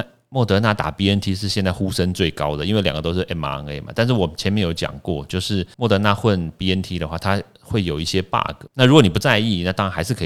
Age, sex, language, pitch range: 30-49, male, Chinese, 85-110 Hz